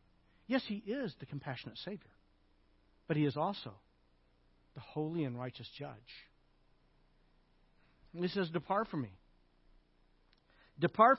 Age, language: 50-69, English